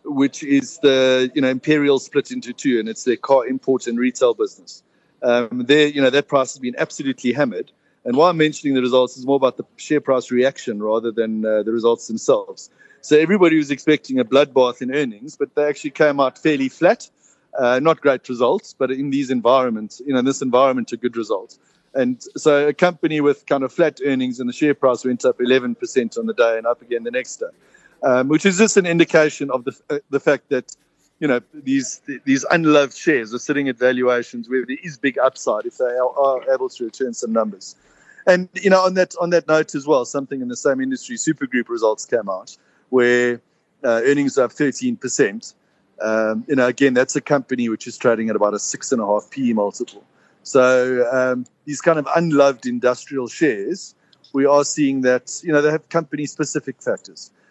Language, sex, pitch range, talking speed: English, male, 125-165 Hz, 205 wpm